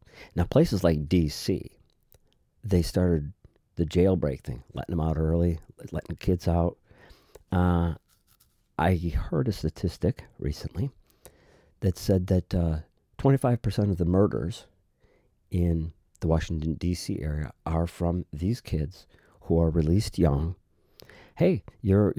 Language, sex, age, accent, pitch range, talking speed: English, male, 50-69, American, 80-100 Hz, 125 wpm